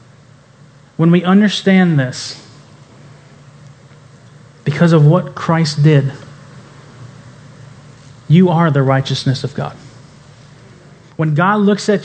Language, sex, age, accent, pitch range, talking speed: English, male, 30-49, American, 140-165 Hz, 95 wpm